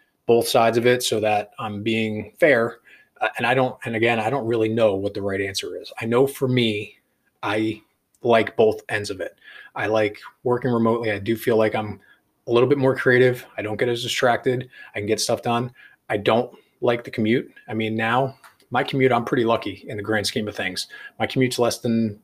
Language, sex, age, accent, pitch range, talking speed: English, male, 20-39, American, 110-130 Hz, 220 wpm